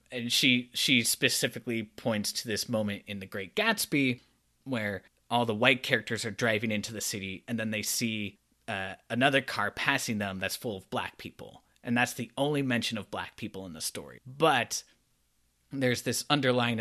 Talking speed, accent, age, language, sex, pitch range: 180 wpm, American, 20-39, English, male, 105-140 Hz